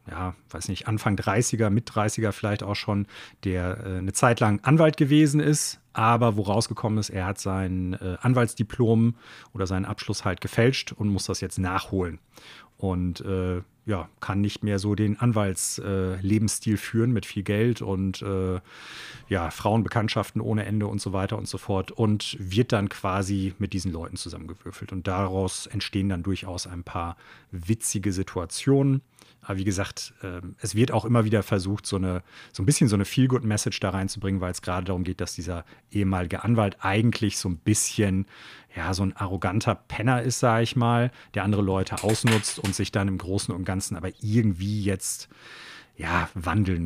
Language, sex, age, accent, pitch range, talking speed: German, male, 40-59, German, 95-115 Hz, 170 wpm